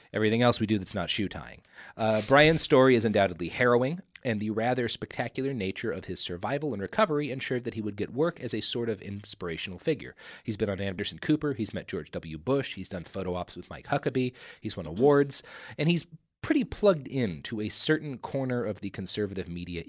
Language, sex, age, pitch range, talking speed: English, male, 30-49, 95-130 Hz, 200 wpm